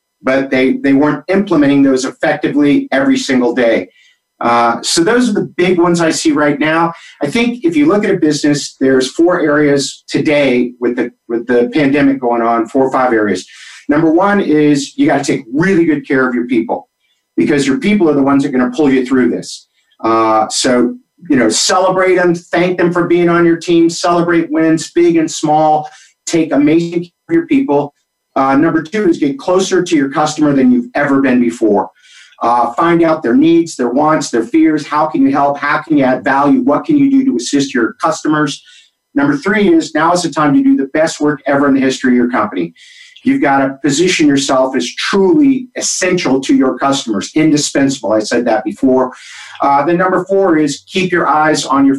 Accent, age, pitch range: American, 50-69, 135-175 Hz